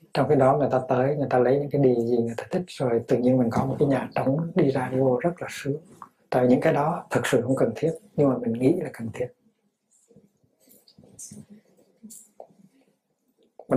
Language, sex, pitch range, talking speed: Vietnamese, male, 130-185 Hz, 210 wpm